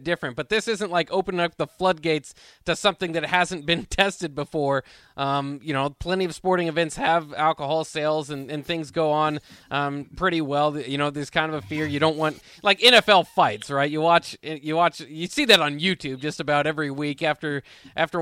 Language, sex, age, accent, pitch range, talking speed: English, male, 20-39, American, 145-175 Hz, 205 wpm